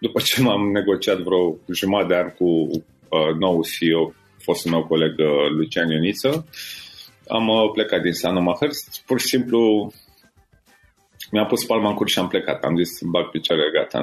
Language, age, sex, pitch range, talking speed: Romanian, 30-49, male, 90-115 Hz, 165 wpm